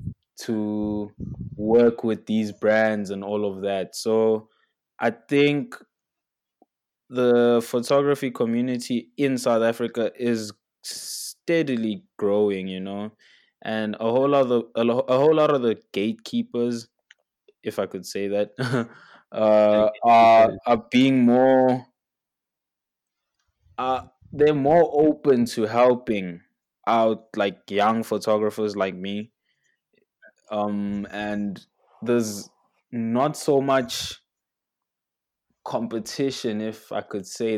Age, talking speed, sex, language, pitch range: 20-39, 110 wpm, male, English, 105-125 Hz